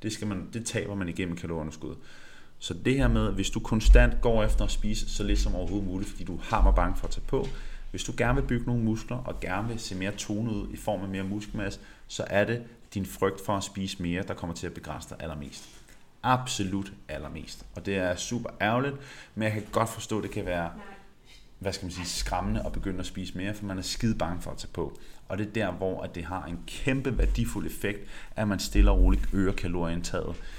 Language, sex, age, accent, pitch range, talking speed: Danish, male, 30-49, native, 90-110 Hz, 240 wpm